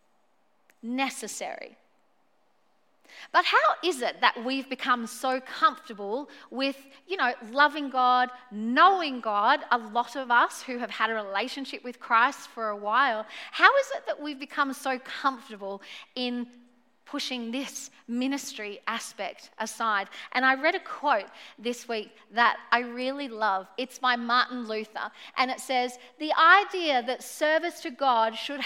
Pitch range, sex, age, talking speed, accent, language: 235-320 Hz, female, 40-59, 145 wpm, Australian, English